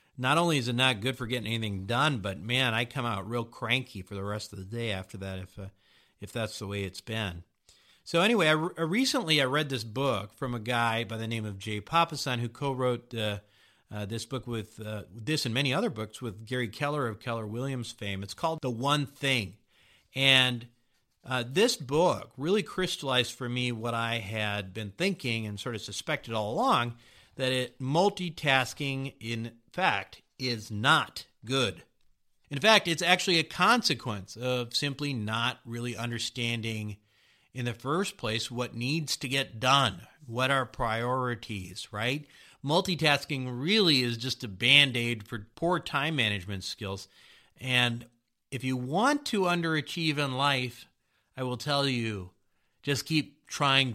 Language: English